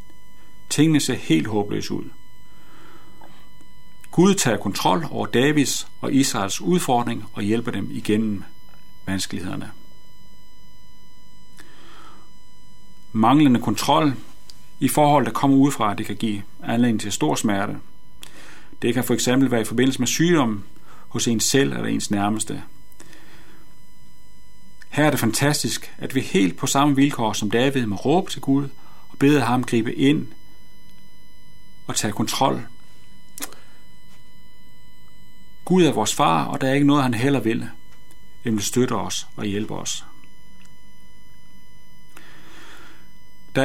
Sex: male